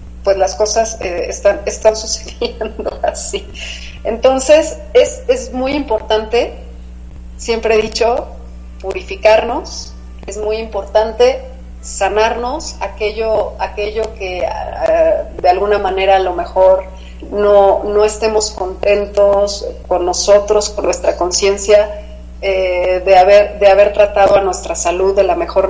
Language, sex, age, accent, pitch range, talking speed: Spanish, female, 30-49, Mexican, 175-220 Hz, 120 wpm